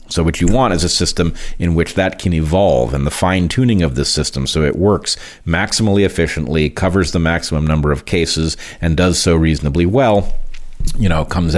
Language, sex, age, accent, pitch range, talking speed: English, male, 40-59, American, 80-95 Hz, 195 wpm